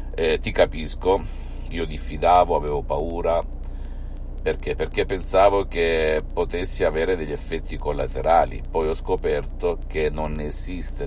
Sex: male